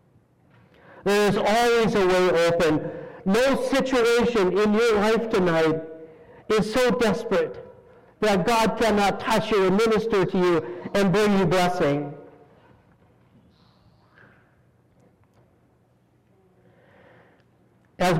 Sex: male